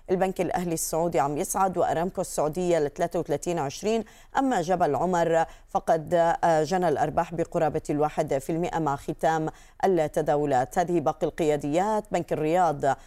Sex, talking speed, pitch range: female, 115 wpm, 155-190 Hz